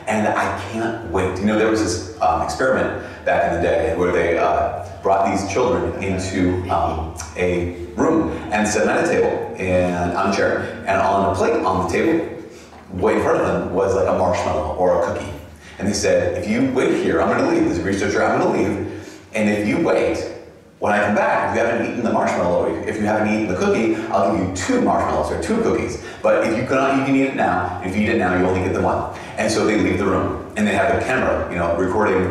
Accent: American